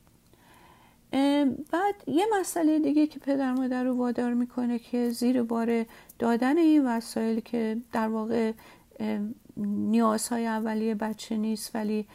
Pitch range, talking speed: 225-295 Hz, 120 wpm